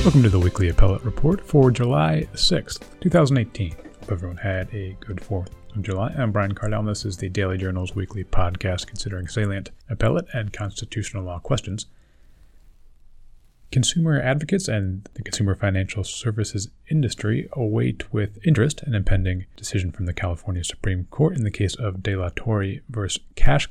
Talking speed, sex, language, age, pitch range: 160 wpm, male, English, 30-49, 95-115 Hz